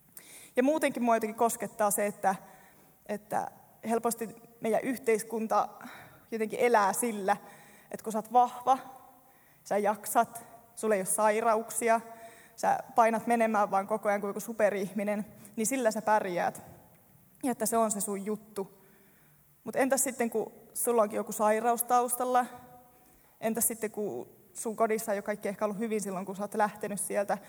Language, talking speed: Finnish, 155 wpm